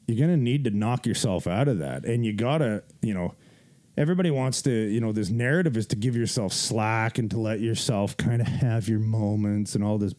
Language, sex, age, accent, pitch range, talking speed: English, male, 30-49, American, 110-145 Hz, 235 wpm